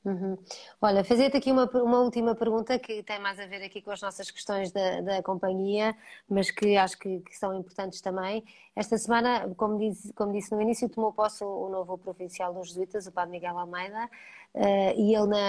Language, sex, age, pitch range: Portuguese, female, 20-39, 190-220 Hz